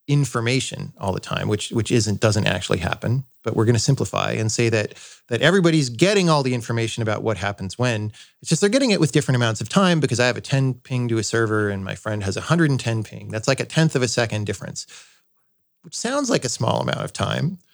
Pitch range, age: 110-145 Hz, 30-49